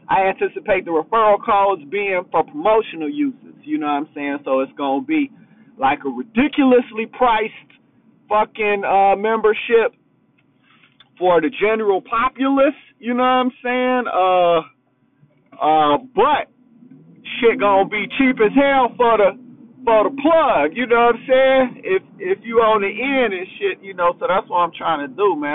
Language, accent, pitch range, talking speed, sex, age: English, American, 165-255 Hz, 165 wpm, male, 50-69